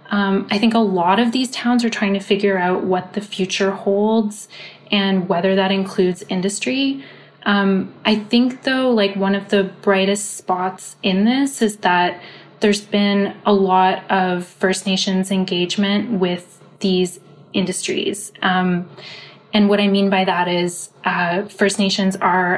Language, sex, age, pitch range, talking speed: English, female, 20-39, 185-210 Hz, 155 wpm